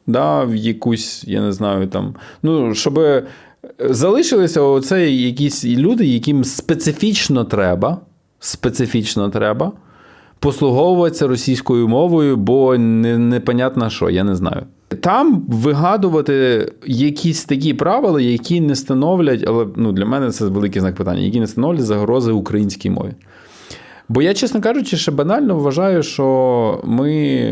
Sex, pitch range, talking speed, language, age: male, 100-145 Hz, 125 wpm, Ukrainian, 20-39